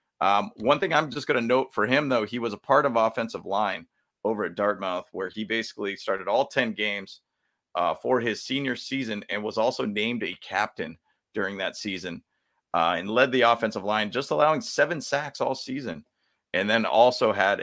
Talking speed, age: 195 wpm, 30-49